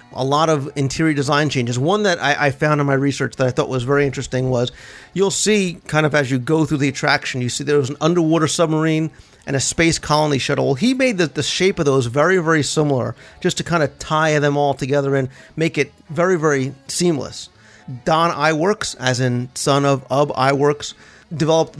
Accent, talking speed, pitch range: American, 210 wpm, 130-160 Hz